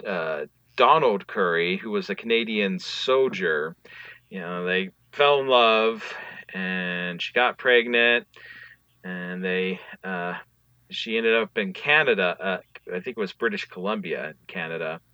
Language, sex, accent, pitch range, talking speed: English, male, American, 105-150 Hz, 130 wpm